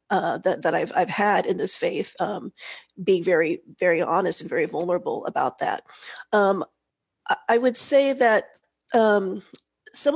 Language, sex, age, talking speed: English, female, 40-59, 155 wpm